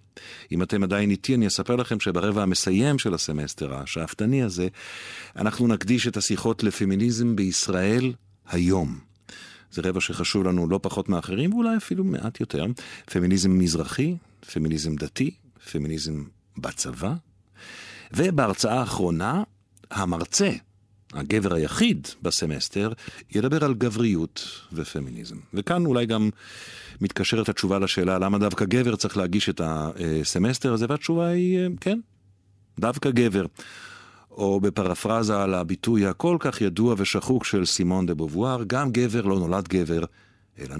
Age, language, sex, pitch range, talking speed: 50-69, Hebrew, male, 90-115 Hz, 125 wpm